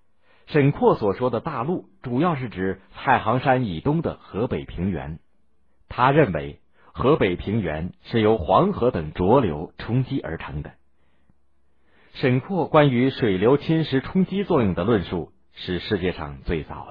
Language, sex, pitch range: Chinese, male, 75-120 Hz